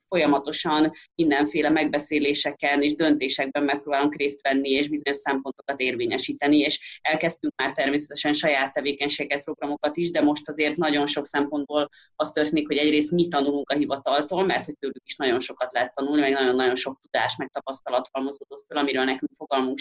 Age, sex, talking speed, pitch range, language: 30-49, female, 160 wpm, 145-165 Hz, Hungarian